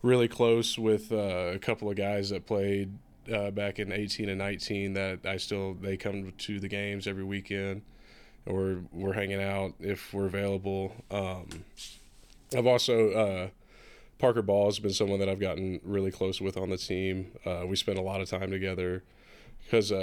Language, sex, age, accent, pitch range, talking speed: English, male, 20-39, American, 95-105 Hz, 185 wpm